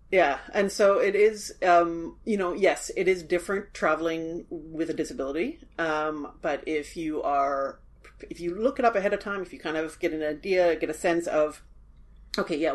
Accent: American